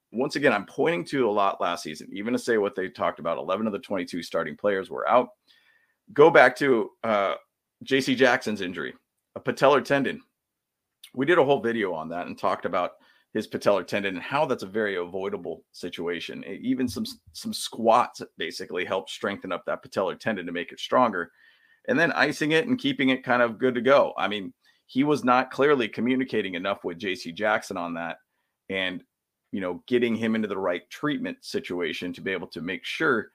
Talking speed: 200 wpm